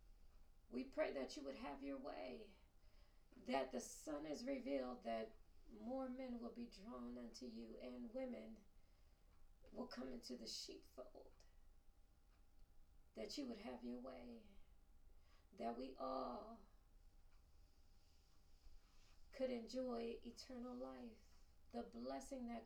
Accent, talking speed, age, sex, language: American, 115 wpm, 30-49, female, English